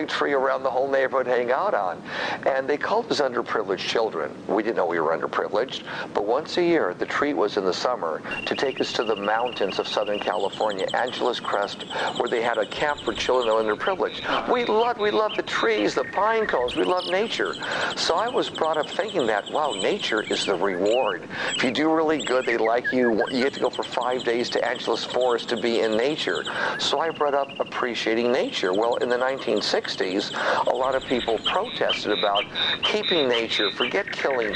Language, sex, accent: English, male, American